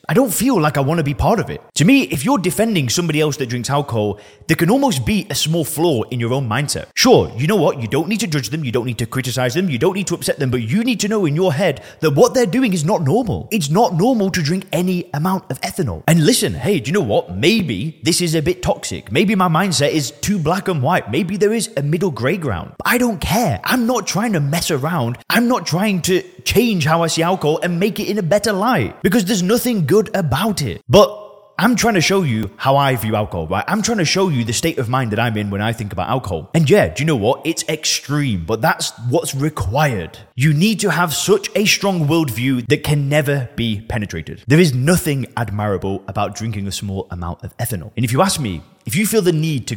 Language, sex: English, male